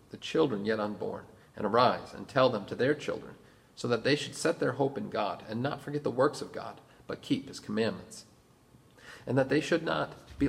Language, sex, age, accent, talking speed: English, male, 40-59, American, 215 wpm